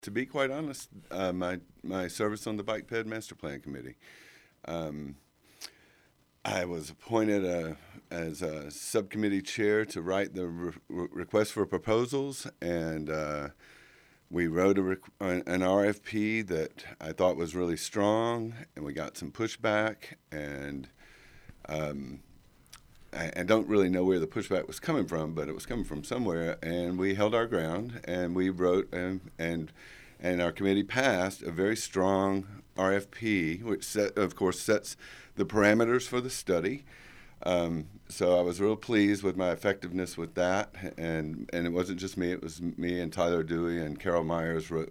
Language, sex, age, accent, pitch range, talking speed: English, male, 50-69, American, 85-105 Hz, 165 wpm